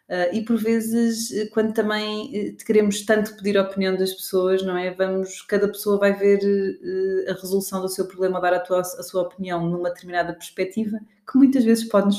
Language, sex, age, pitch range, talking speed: Portuguese, female, 20-39, 180-220 Hz, 195 wpm